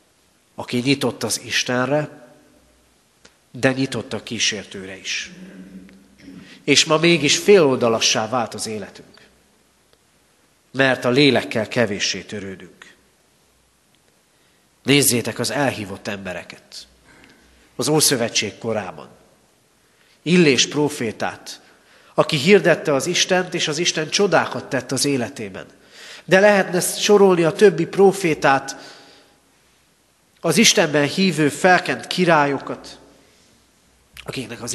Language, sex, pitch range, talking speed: Hungarian, male, 110-155 Hz, 95 wpm